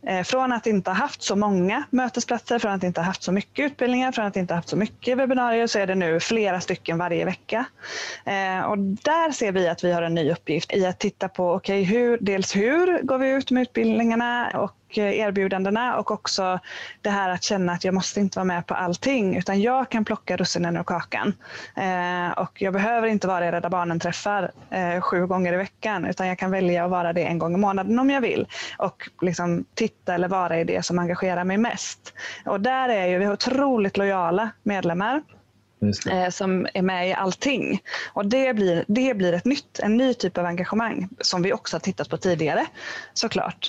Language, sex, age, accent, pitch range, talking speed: Swedish, female, 20-39, native, 180-225 Hz, 205 wpm